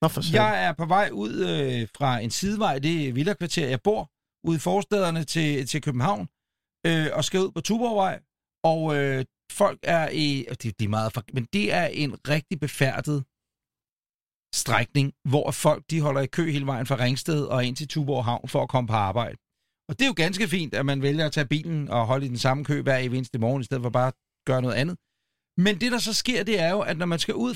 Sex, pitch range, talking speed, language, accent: male, 130-180 Hz, 225 wpm, Danish, native